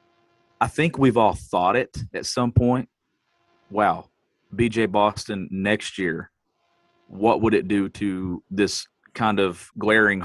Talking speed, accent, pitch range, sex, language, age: 135 wpm, American, 100-120 Hz, male, English, 40-59